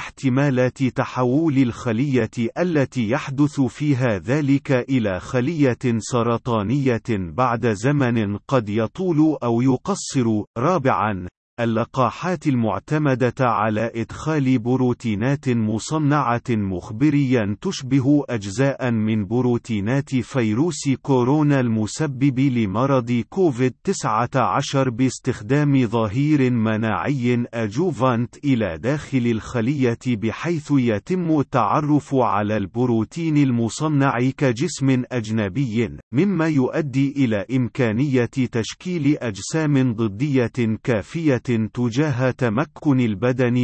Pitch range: 115-140 Hz